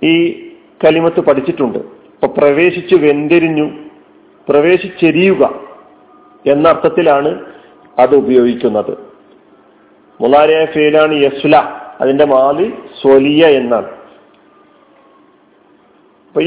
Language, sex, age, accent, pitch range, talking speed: Malayalam, male, 40-59, native, 155-200 Hz, 65 wpm